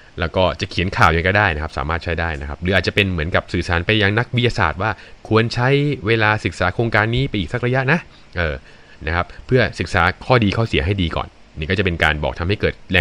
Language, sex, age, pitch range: Thai, male, 20-39, 80-105 Hz